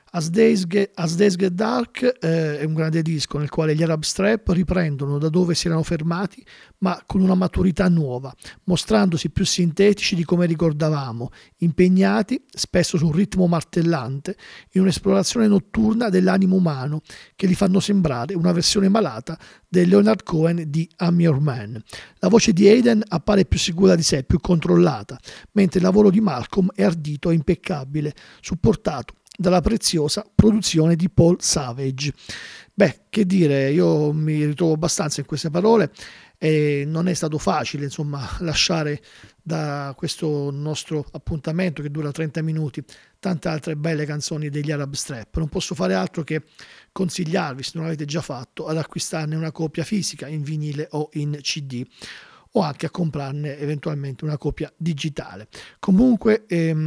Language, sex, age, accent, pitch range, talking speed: Italian, male, 50-69, native, 150-185 Hz, 155 wpm